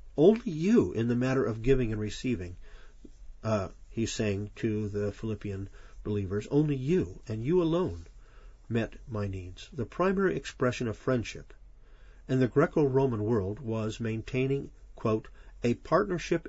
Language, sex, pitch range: English, male, 110-140 Hz